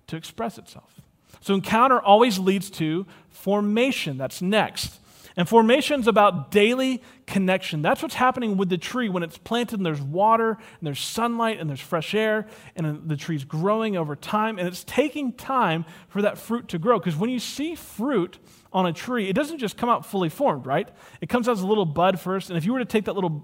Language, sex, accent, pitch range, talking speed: English, male, American, 170-225 Hz, 210 wpm